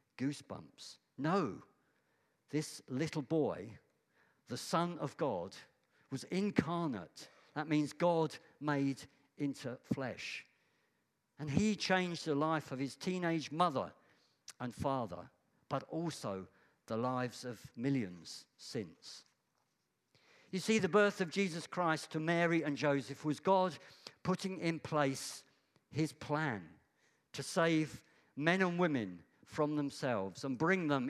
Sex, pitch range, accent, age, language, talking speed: male, 130-165 Hz, British, 50-69, English, 120 wpm